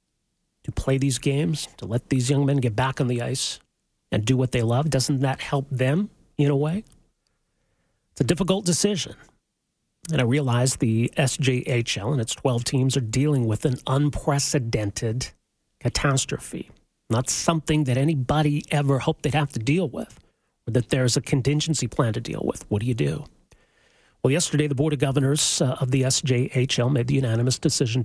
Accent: American